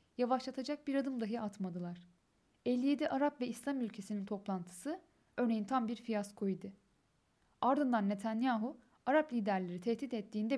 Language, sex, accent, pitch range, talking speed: Turkish, female, native, 205-265 Hz, 120 wpm